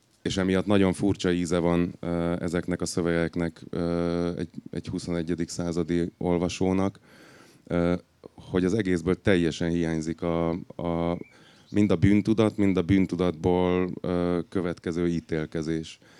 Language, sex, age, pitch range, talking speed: Hungarian, male, 30-49, 85-105 Hz, 120 wpm